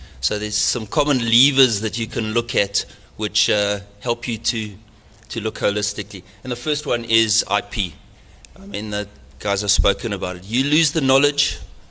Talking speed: 180 wpm